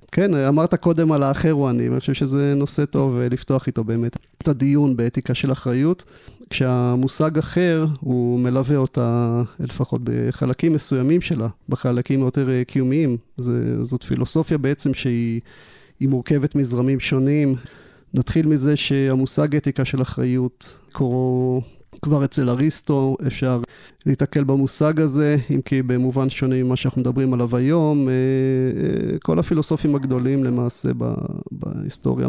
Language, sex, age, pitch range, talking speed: Hebrew, male, 30-49, 125-150 Hz, 130 wpm